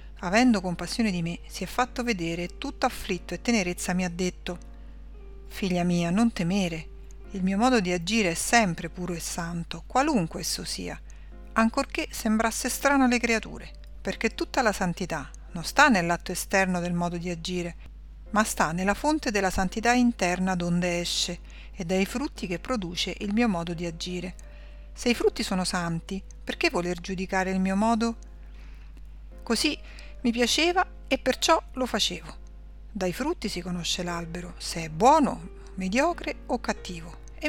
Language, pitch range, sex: Italian, 180-240 Hz, female